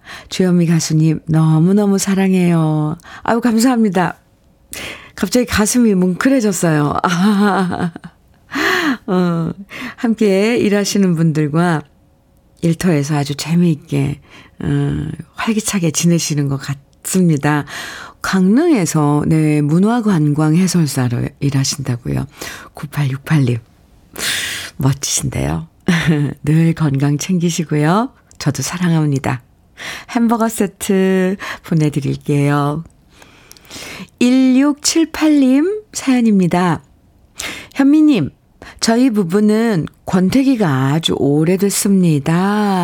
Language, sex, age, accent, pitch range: Korean, female, 50-69, native, 150-230 Hz